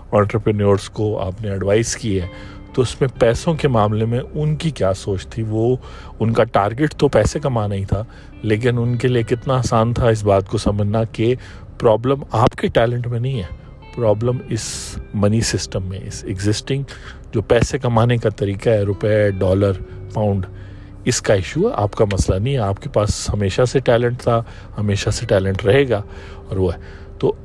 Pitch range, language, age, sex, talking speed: 100-125 Hz, Urdu, 40-59, male, 190 wpm